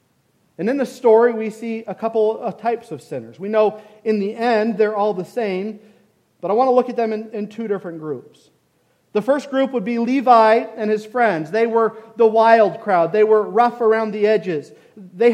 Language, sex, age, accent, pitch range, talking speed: English, male, 40-59, American, 195-240 Hz, 210 wpm